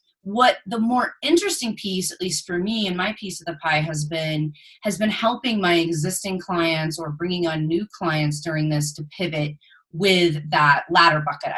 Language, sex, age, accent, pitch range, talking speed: English, female, 30-49, American, 160-195 Hz, 185 wpm